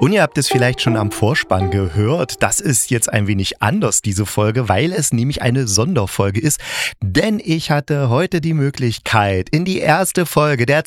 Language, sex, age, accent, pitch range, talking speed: German, male, 30-49, German, 100-130 Hz, 190 wpm